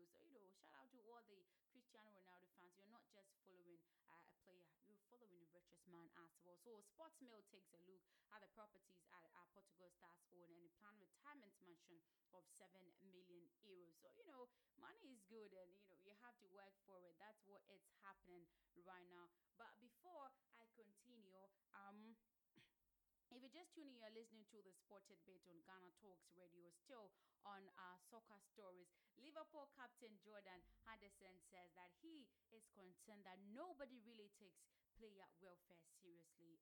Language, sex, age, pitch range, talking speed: English, female, 20-39, 175-220 Hz, 170 wpm